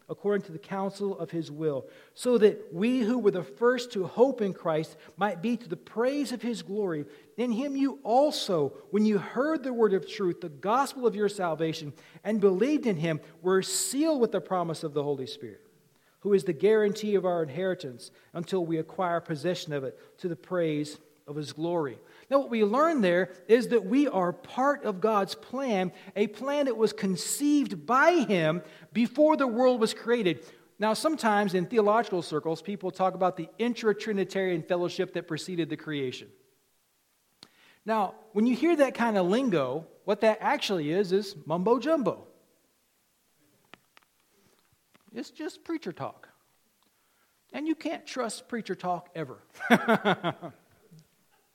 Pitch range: 175-235 Hz